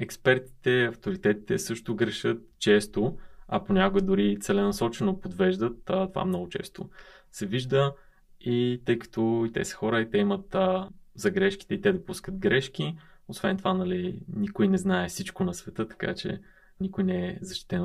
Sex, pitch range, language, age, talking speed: male, 125-190 Hz, Bulgarian, 20-39, 150 wpm